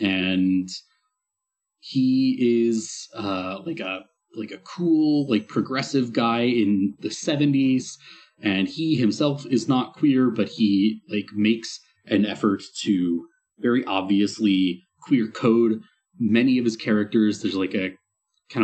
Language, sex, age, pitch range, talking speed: English, male, 30-49, 100-135 Hz, 130 wpm